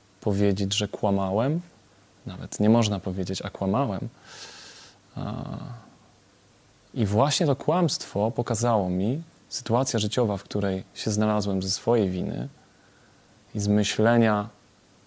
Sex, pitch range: male, 100-115 Hz